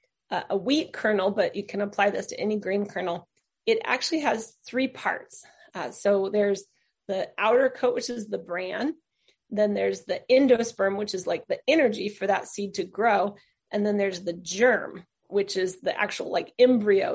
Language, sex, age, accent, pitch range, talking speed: English, female, 30-49, American, 200-250 Hz, 185 wpm